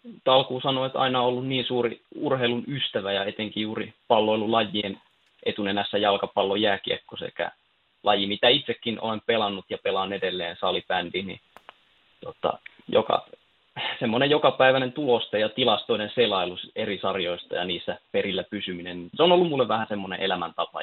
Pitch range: 100-130 Hz